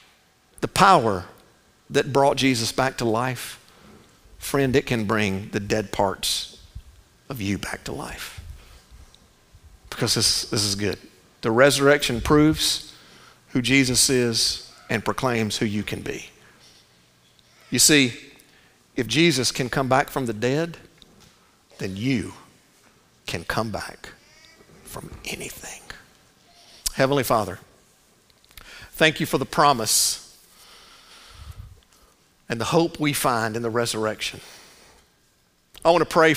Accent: American